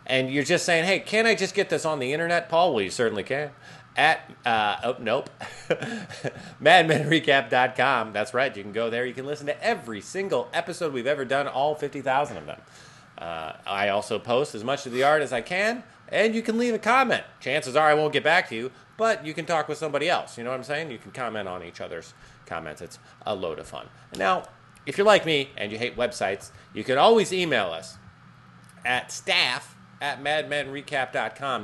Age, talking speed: 30-49, 210 wpm